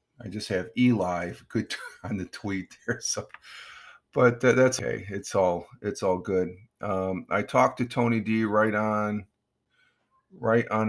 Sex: male